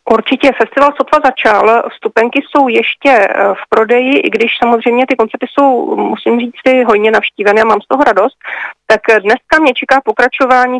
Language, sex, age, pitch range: Czech, female, 40-59, 205-245 Hz